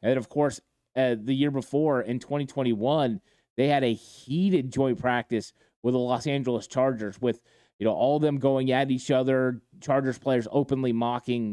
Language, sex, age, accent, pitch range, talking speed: English, male, 30-49, American, 120-140 Hz, 175 wpm